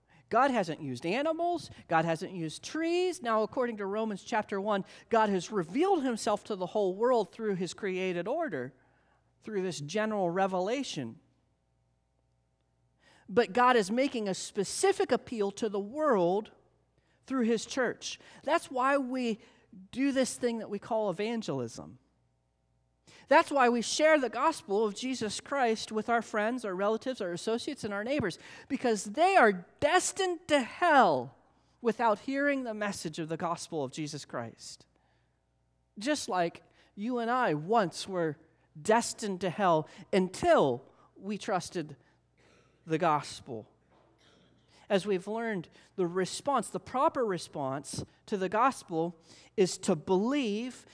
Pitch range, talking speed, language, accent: 175-250 Hz, 140 wpm, English, American